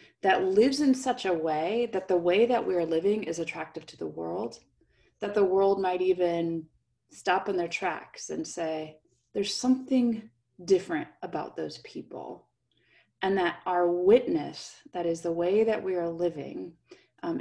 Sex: female